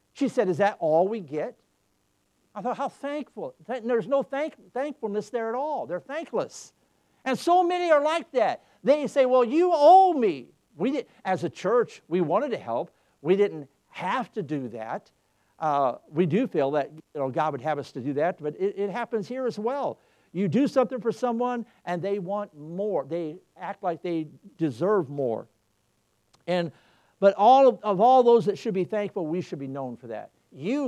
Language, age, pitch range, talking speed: English, 60-79, 160-240 Hz, 185 wpm